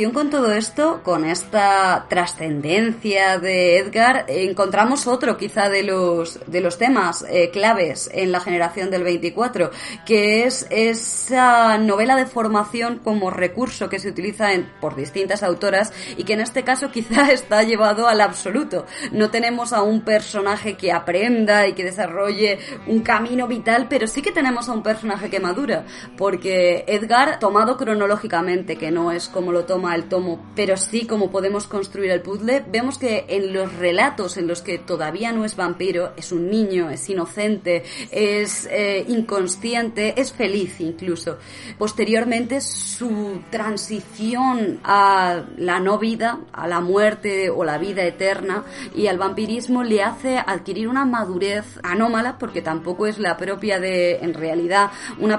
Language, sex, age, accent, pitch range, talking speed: Spanish, female, 20-39, Spanish, 185-230 Hz, 155 wpm